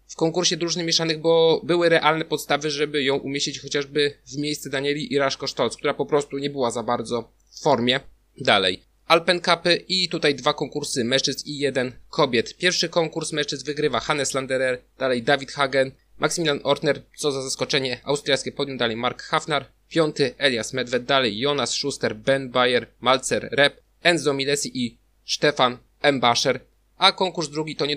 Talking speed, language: 165 wpm, Polish